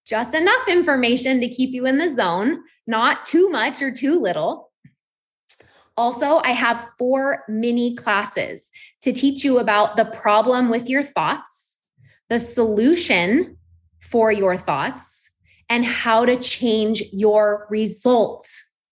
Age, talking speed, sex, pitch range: 20-39, 130 wpm, female, 220-265 Hz